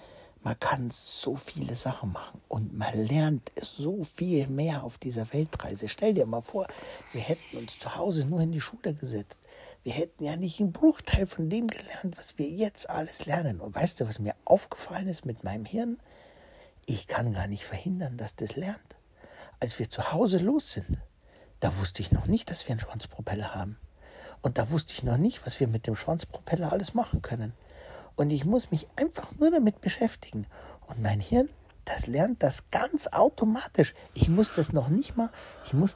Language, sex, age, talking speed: German, male, 60-79, 190 wpm